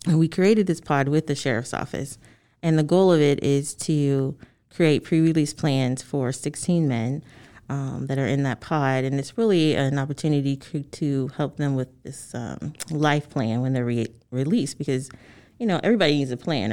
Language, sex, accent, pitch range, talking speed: English, female, American, 130-160 Hz, 185 wpm